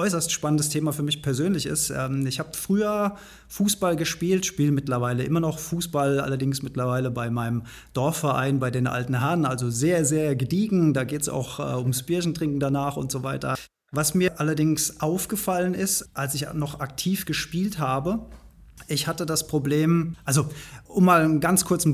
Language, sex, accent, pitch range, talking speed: German, male, German, 140-175 Hz, 175 wpm